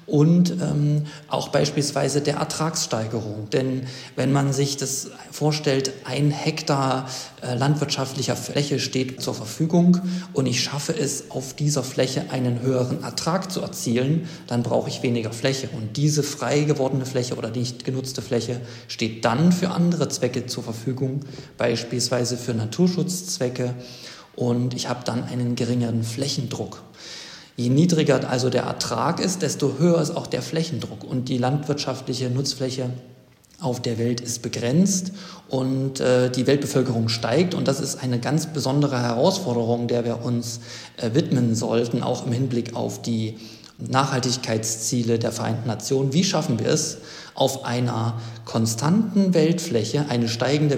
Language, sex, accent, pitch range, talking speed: German, male, German, 120-145 Hz, 140 wpm